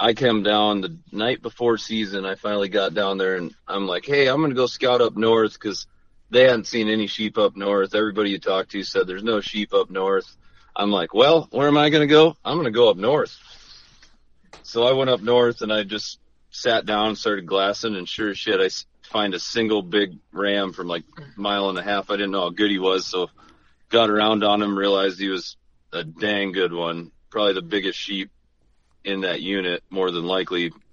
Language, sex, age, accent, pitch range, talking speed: English, male, 30-49, American, 90-115 Hz, 225 wpm